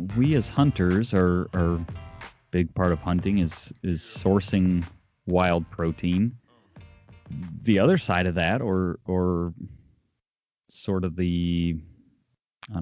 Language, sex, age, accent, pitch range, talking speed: English, male, 30-49, American, 85-105 Hz, 115 wpm